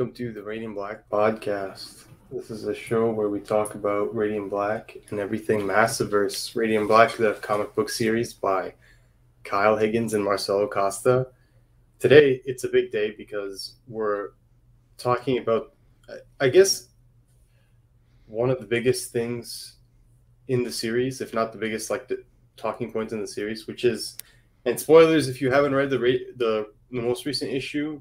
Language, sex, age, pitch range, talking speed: English, male, 20-39, 110-125 Hz, 165 wpm